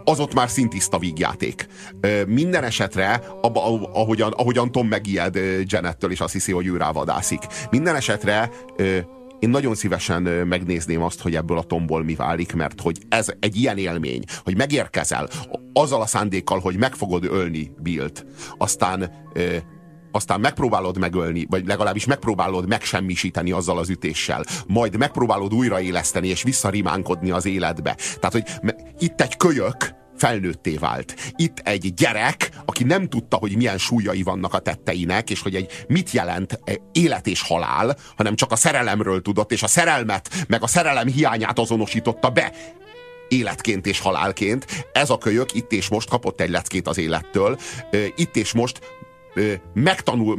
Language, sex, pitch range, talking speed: Hungarian, male, 95-125 Hz, 150 wpm